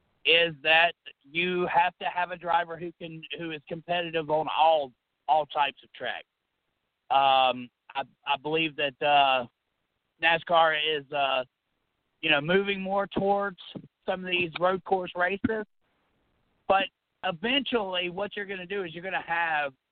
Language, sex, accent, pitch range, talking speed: English, male, American, 140-180 Hz, 150 wpm